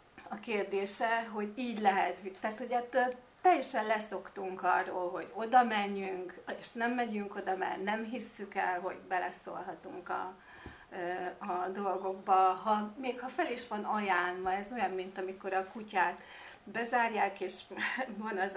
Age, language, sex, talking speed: 40-59, Hungarian, female, 140 wpm